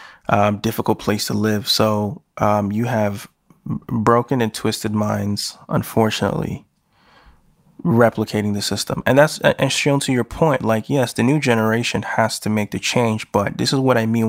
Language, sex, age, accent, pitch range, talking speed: English, male, 20-39, American, 105-130 Hz, 170 wpm